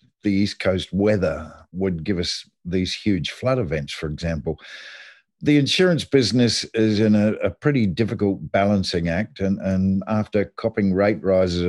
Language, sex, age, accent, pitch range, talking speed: English, male, 50-69, Australian, 95-110 Hz, 155 wpm